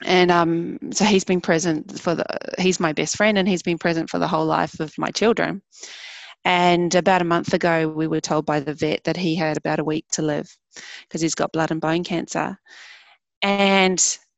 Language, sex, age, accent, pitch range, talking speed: English, female, 20-39, Australian, 165-195 Hz, 210 wpm